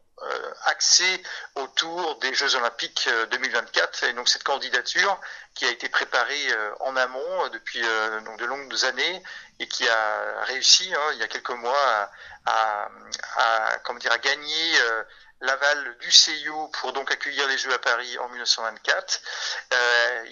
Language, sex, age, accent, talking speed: French, male, 40-59, French, 160 wpm